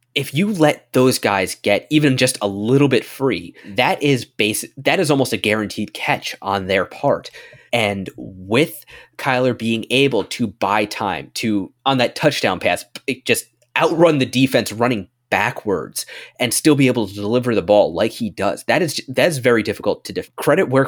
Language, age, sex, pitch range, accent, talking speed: English, 20-39, male, 105-135 Hz, American, 185 wpm